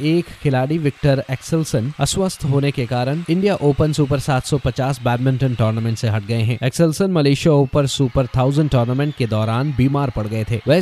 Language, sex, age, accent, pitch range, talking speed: Hindi, male, 20-39, native, 125-165 Hz, 170 wpm